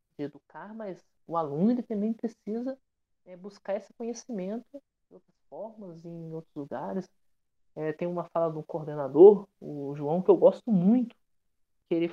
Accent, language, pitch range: Brazilian, Portuguese, 165-230 Hz